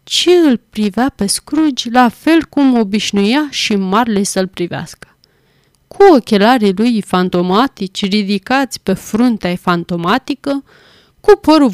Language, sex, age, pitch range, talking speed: Romanian, female, 30-49, 190-255 Hz, 120 wpm